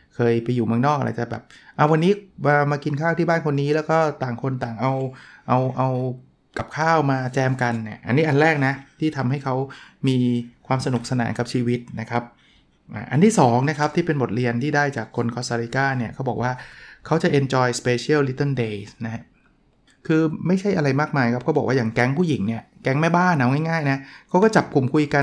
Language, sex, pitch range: Thai, male, 125-155 Hz